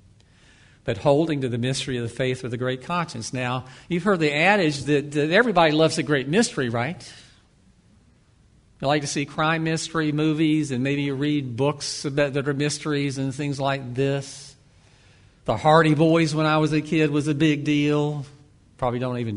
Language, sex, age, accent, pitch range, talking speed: English, male, 50-69, American, 120-145 Hz, 185 wpm